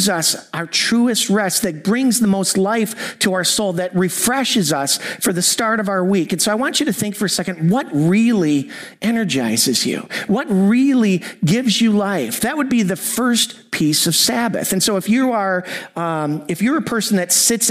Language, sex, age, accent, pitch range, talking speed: English, male, 50-69, American, 175-225 Hz, 205 wpm